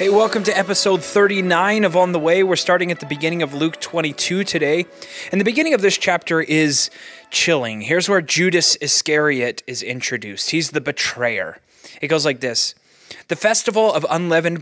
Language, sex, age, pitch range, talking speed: English, male, 20-39, 135-180 Hz, 175 wpm